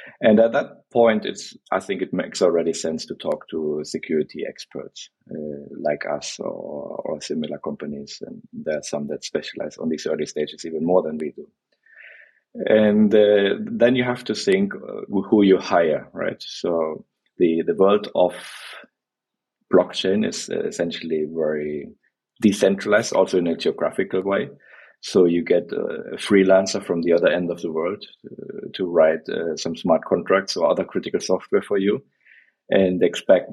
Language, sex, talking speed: English, male, 165 wpm